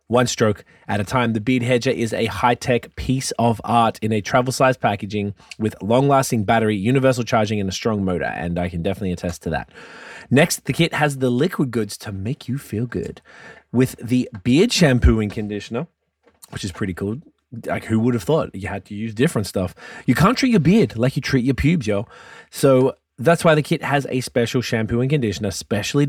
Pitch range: 105-140 Hz